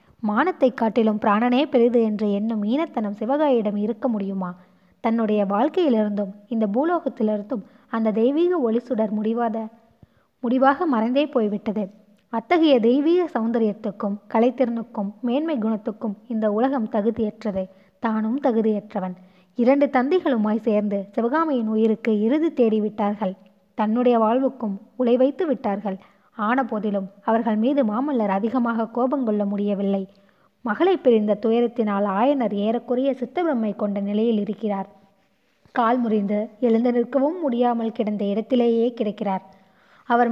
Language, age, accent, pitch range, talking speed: Tamil, 20-39, native, 210-250 Hz, 105 wpm